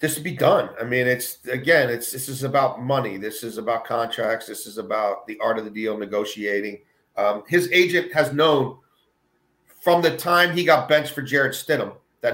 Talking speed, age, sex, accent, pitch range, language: 200 wpm, 40-59, male, American, 130-190 Hz, English